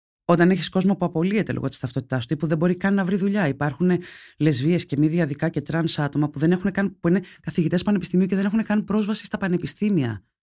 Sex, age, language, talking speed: female, 20-39, Greek, 215 wpm